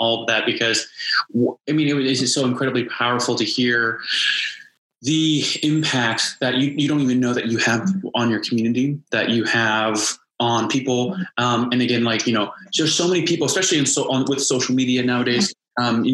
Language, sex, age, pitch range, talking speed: English, male, 20-39, 120-140 Hz, 195 wpm